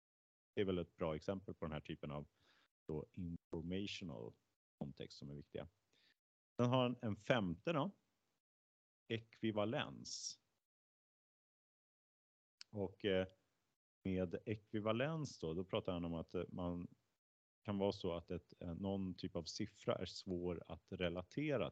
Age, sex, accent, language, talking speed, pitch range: 30-49, male, Norwegian, Swedish, 125 wpm, 80-100 Hz